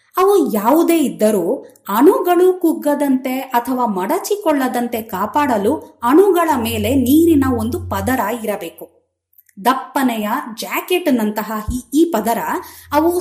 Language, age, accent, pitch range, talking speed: Kannada, 20-39, native, 225-325 Hz, 85 wpm